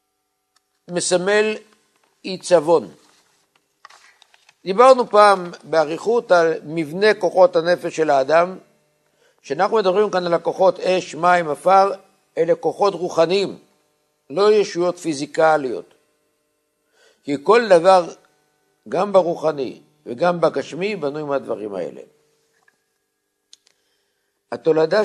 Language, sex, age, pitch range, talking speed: Hebrew, male, 60-79, 145-190 Hz, 85 wpm